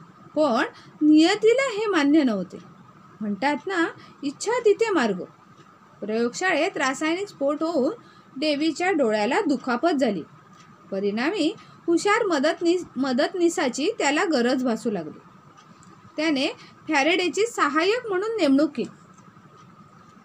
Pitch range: 225-345 Hz